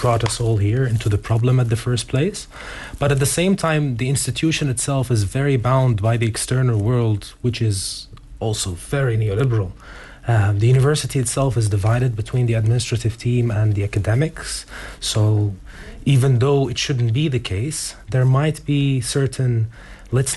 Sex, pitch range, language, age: male, 110-135 Hz, English, 30-49